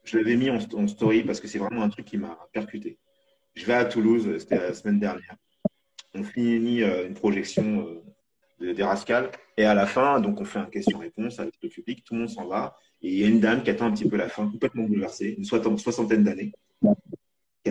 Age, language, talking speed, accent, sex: 30-49, French, 220 wpm, French, male